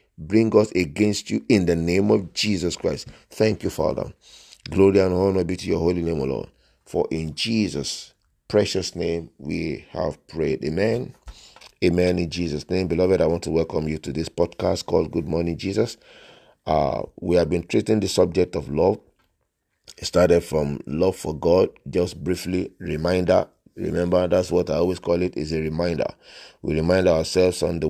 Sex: male